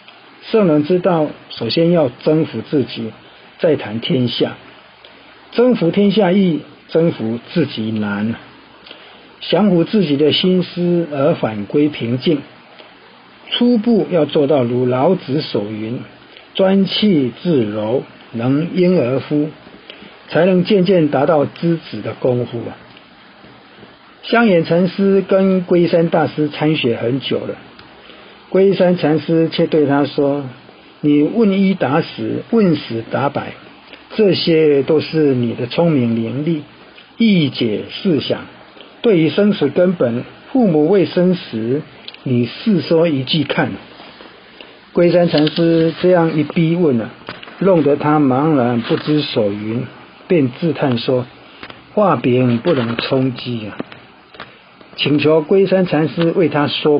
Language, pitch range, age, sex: Chinese, 130-180 Hz, 50-69, male